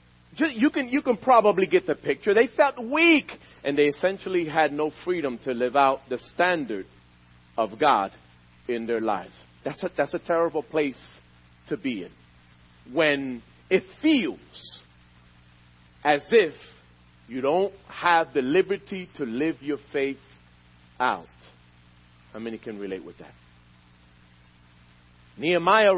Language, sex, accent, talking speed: English, male, American, 135 wpm